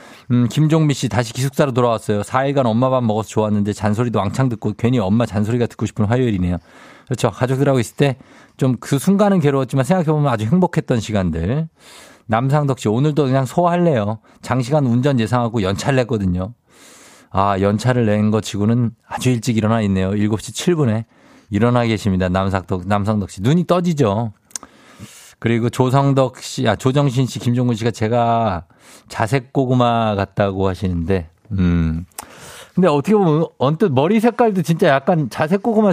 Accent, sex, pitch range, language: native, male, 110-150 Hz, Korean